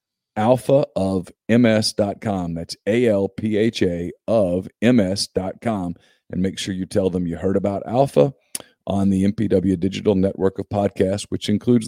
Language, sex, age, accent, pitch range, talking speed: English, male, 40-59, American, 95-120 Hz, 150 wpm